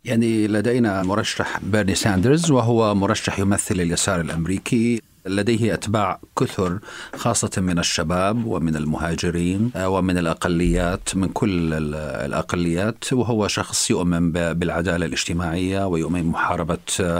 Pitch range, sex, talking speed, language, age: 85-110 Hz, male, 105 wpm, Arabic, 50-69